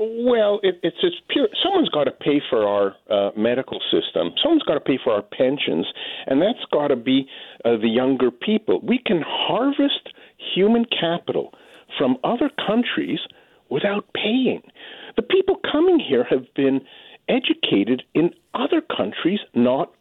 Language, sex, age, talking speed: English, male, 50-69, 155 wpm